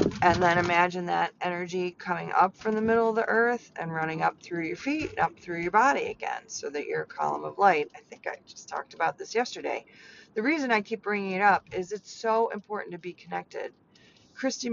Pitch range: 180-225 Hz